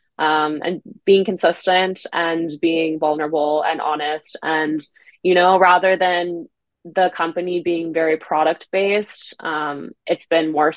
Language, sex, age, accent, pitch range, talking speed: English, female, 20-39, American, 155-175 Hz, 135 wpm